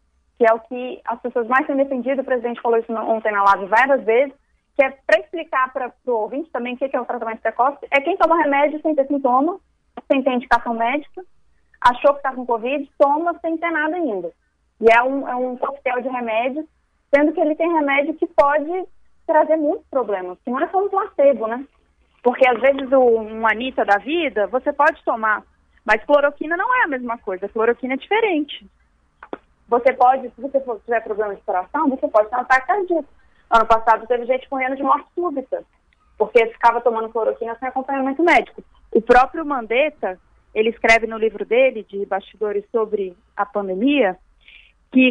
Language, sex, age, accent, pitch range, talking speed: Portuguese, female, 20-39, Brazilian, 230-295 Hz, 190 wpm